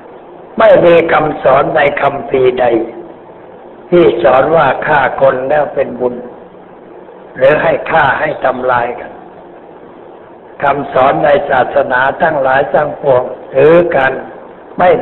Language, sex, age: Thai, male, 60-79